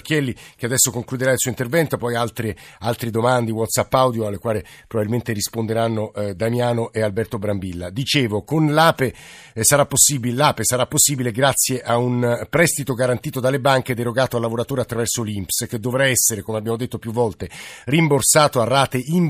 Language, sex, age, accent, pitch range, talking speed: Italian, male, 50-69, native, 115-145 Hz, 170 wpm